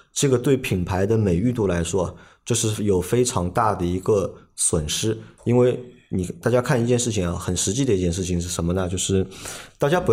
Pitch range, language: 90-120 Hz, Chinese